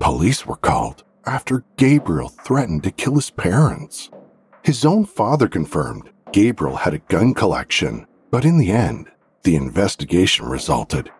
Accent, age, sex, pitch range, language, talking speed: American, 50-69, male, 90-135 Hz, English, 140 wpm